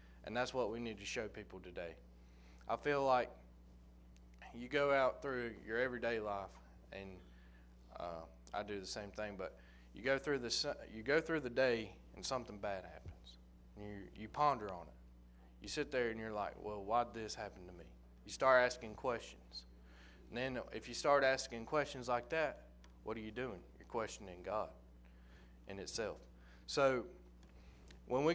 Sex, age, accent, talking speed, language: male, 20-39, American, 175 wpm, English